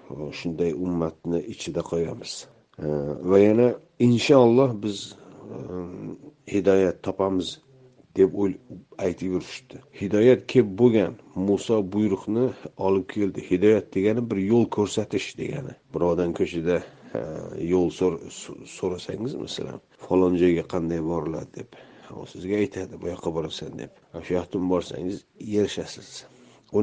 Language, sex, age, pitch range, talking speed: Russian, male, 50-69, 90-110 Hz, 85 wpm